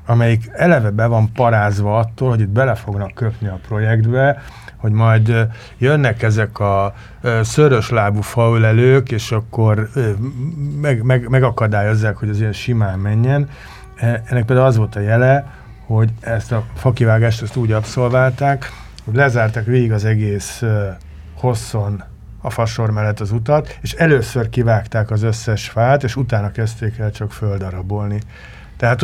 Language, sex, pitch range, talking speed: Hungarian, male, 110-125 Hz, 135 wpm